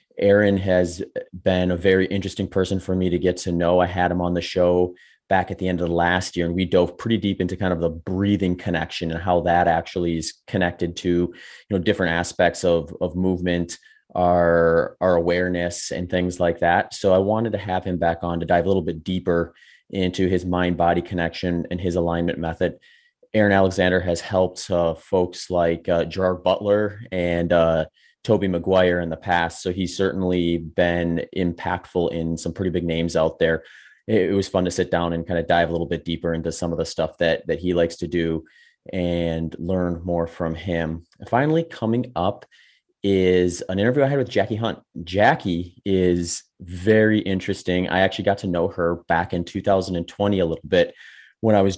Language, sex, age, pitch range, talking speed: English, male, 30-49, 85-95 Hz, 200 wpm